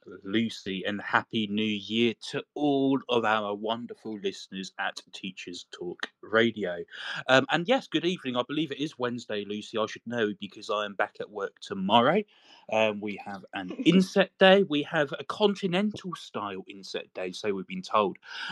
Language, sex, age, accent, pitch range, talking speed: English, male, 20-39, British, 105-145 Hz, 170 wpm